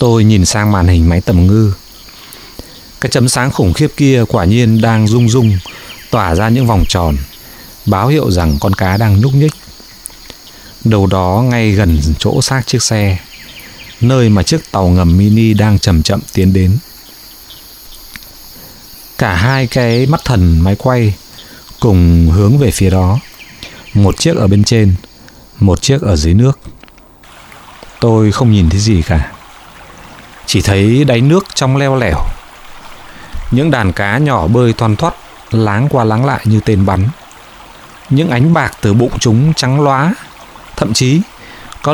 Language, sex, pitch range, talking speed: Vietnamese, male, 95-130 Hz, 160 wpm